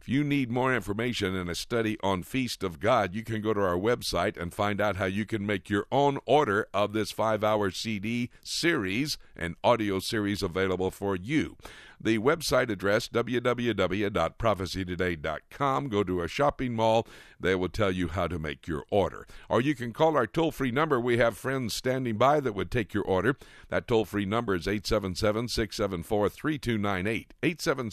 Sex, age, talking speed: male, 60-79, 170 wpm